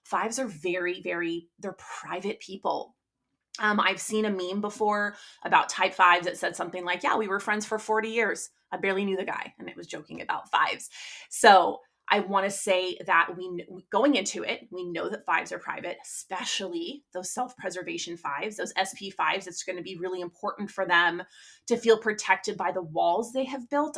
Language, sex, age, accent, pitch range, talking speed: English, female, 20-39, American, 180-215 Hz, 195 wpm